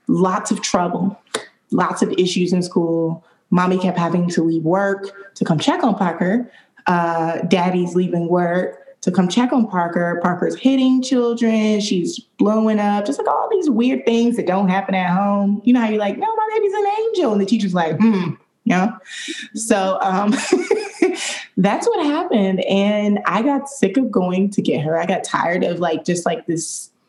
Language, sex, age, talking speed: English, female, 20-39, 185 wpm